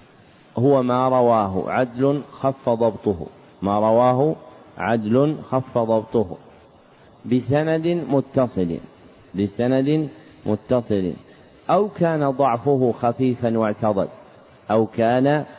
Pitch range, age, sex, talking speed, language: 115-140 Hz, 40-59, male, 85 wpm, Arabic